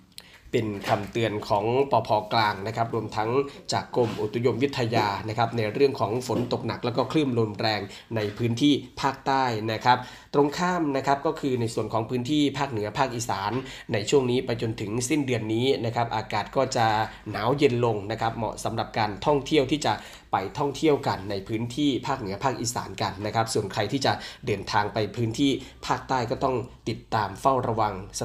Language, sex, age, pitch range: Thai, male, 20-39, 110-140 Hz